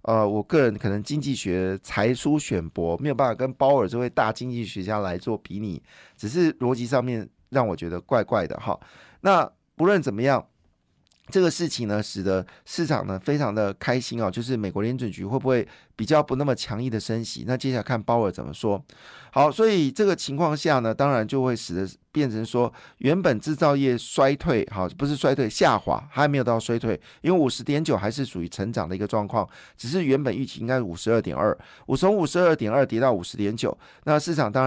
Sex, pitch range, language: male, 105-140 Hz, Chinese